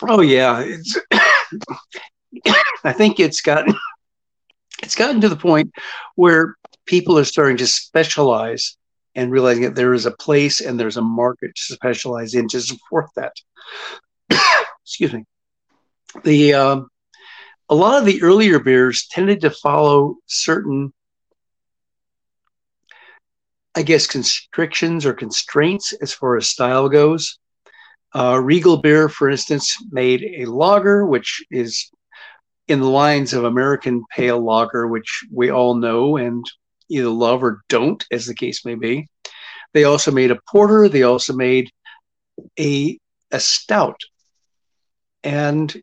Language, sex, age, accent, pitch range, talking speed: English, male, 60-79, American, 125-160 Hz, 135 wpm